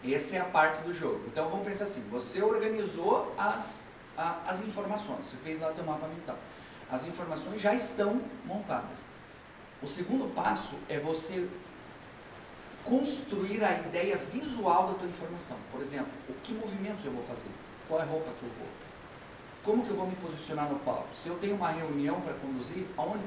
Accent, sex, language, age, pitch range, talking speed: Brazilian, male, Portuguese, 40-59, 130-190 Hz, 185 wpm